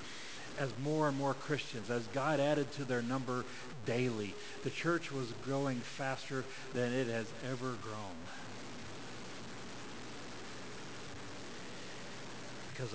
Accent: American